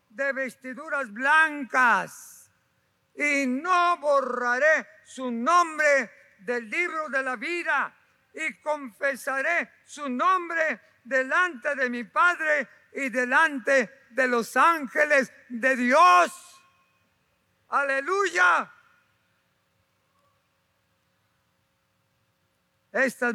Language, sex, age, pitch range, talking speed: Spanish, male, 50-69, 235-280 Hz, 75 wpm